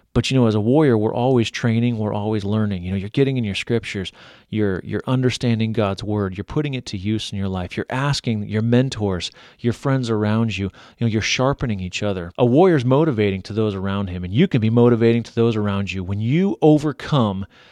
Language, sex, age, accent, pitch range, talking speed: English, male, 30-49, American, 100-120 Hz, 220 wpm